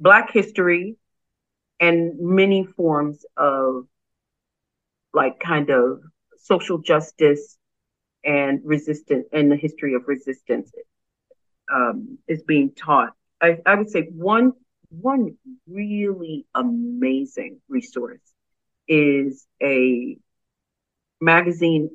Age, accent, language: 40-59, American, English